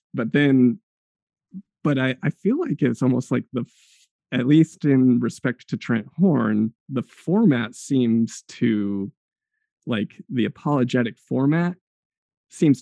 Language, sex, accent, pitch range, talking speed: English, male, American, 115-165 Hz, 125 wpm